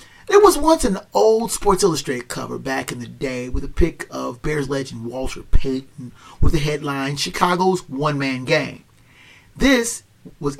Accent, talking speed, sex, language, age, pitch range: American, 160 wpm, male, English, 40-59, 135-180 Hz